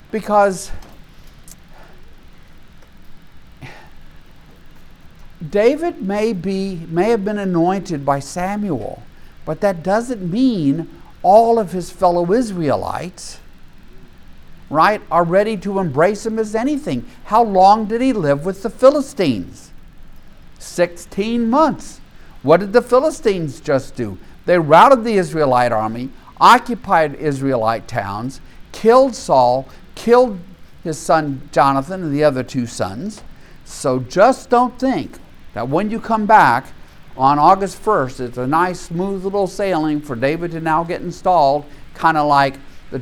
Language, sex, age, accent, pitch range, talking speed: English, male, 50-69, American, 145-220 Hz, 125 wpm